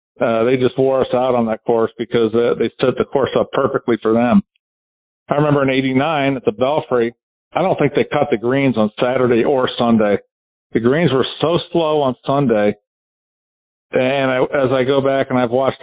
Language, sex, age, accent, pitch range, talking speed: English, male, 50-69, American, 120-140 Hz, 200 wpm